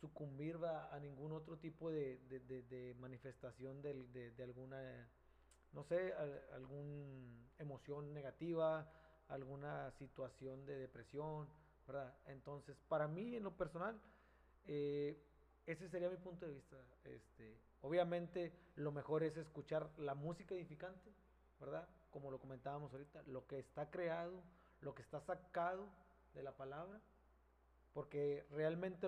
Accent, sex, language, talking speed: Mexican, male, Spanish, 135 wpm